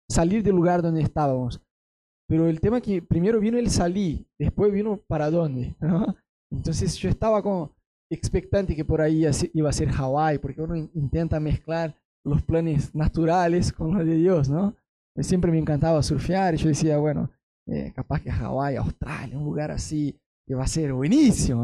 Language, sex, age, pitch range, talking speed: Spanish, male, 20-39, 145-185 Hz, 175 wpm